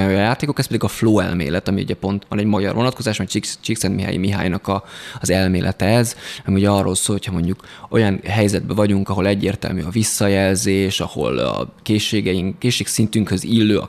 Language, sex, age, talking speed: Hungarian, male, 20-39, 165 wpm